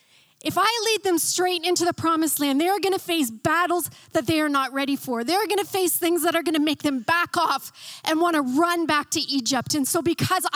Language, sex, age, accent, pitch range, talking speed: English, female, 30-49, American, 245-340 Hz, 255 wpm